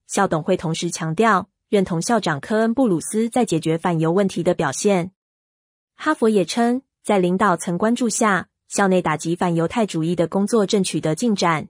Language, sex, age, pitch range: Chinese, female, 20-39, 175-215 Hz